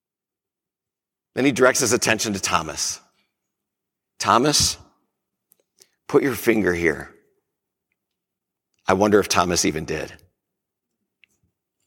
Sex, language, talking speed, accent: male, English, 90 wpm, American